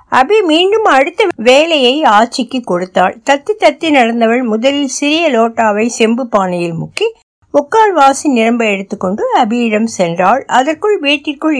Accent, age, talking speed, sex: native, 60-79, 120 wpm, female